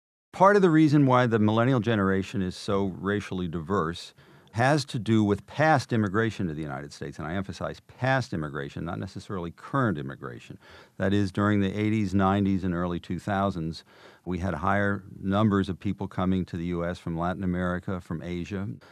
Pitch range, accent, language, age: 85-105 Hz, American, English, 50-69